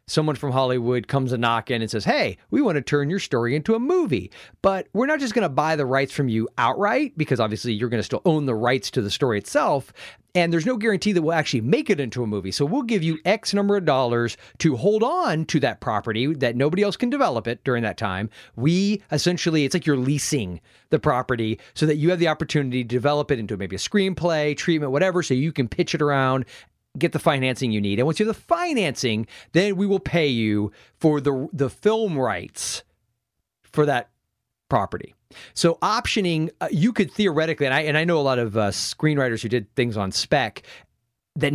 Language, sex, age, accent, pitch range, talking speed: English, male, 40-59, American, 125-175 Hz, 220 wpm